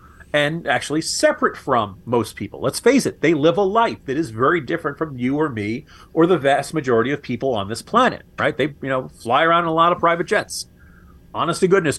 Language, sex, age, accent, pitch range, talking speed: English, male, 40-59, American, 115-170 Hz, 225 wpm